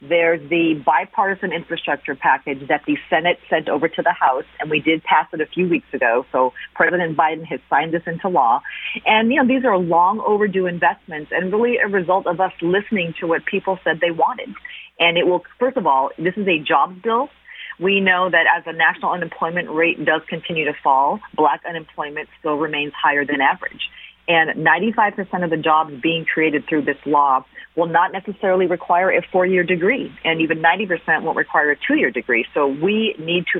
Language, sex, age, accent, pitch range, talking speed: English, female, 40-59, American, 155-185 Hz, 195 wpm